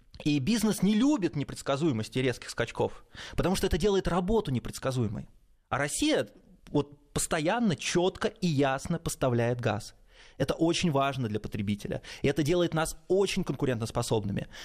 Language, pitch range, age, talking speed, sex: Russian, 120-165 Hz, 20-39, 135 wpm, male